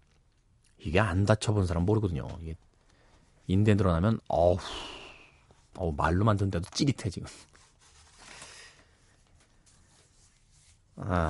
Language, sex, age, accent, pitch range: Korean, male, 40-59, native, 90-125 Hz